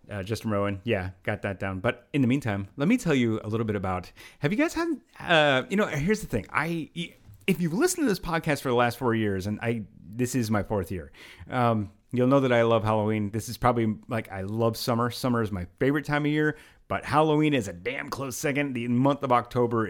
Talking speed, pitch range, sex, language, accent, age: 240 wpm, 105-125 Hz, male, English, American, 30-49